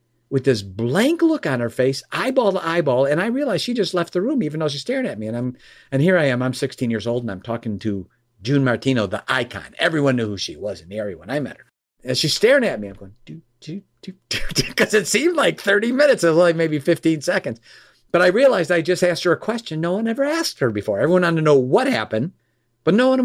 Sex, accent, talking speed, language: male, American, 255 wpm, English